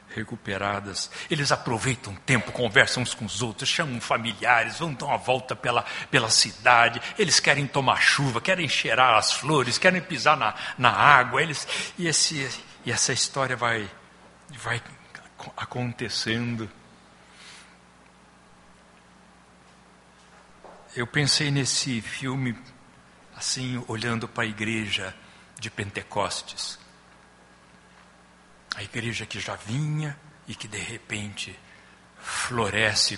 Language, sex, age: Portuguese, male, 60-79